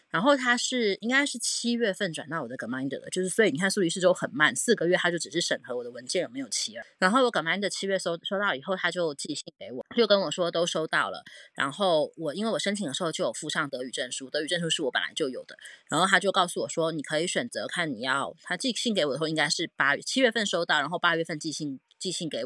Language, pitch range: Chinese, 155-205 Hz